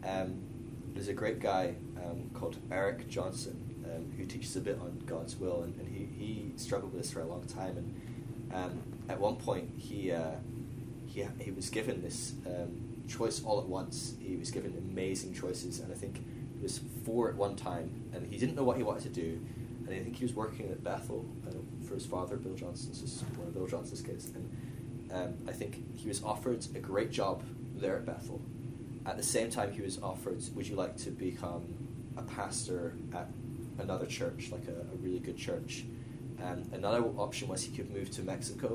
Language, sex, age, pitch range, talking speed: English, male, 20-39, 105-130 Hz, 210 wpm